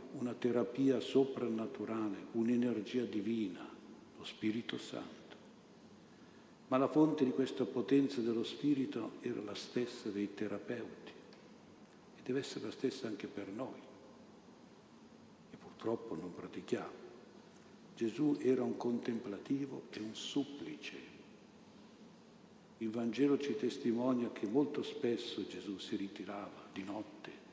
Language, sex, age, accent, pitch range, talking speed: Italian, male, 60-79, native, 105-135 Hz, 115 wpm